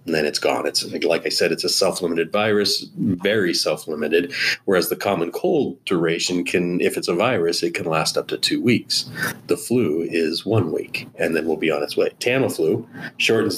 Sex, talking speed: male, 200 wpm